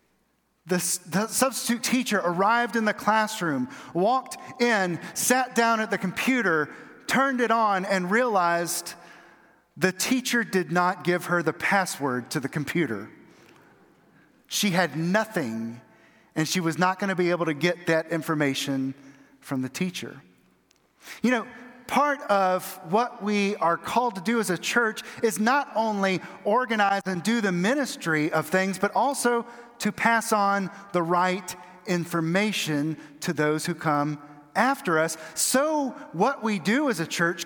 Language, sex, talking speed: English, male, 145 wpm